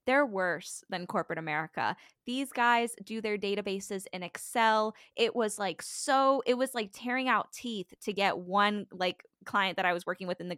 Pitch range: 185-230 Hz